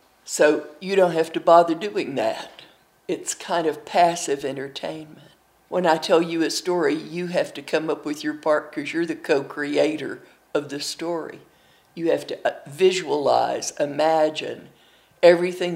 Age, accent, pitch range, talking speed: 50-69, American, 155-185 Hz, 150 wpm